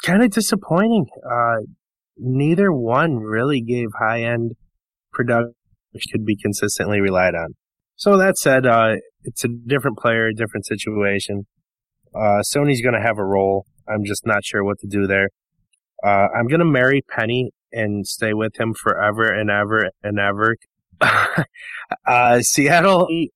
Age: 20-39